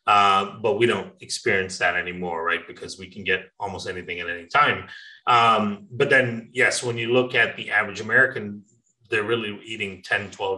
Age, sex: 30-49, male